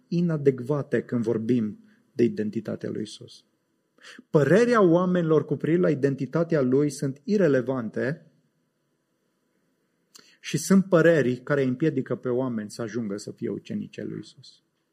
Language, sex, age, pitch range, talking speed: English, male, 30-49, 130-175 Hz, 120 wpm